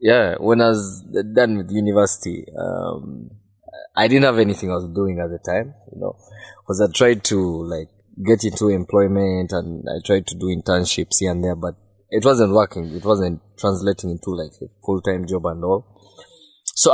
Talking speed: 185 wpm